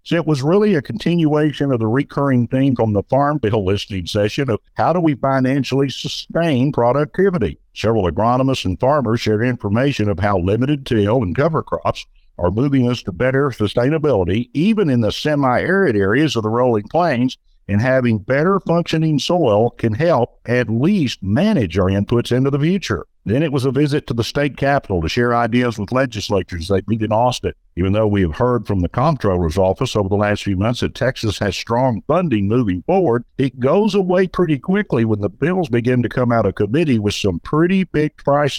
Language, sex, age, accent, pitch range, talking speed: English, male, 60-79, American, 105-140 Hz, 190 wpm